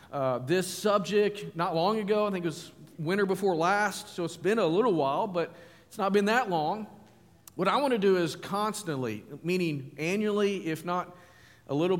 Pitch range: 140-185 Hz